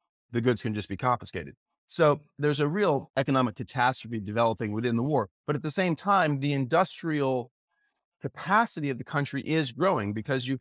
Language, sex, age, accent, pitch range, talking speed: English, male, 30-49, American, 115-160 Hz, 175 wpm